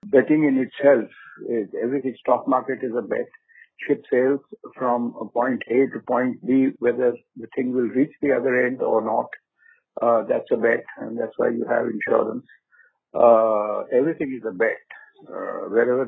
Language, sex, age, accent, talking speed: English, male, 50-69, Indian, 170 wpm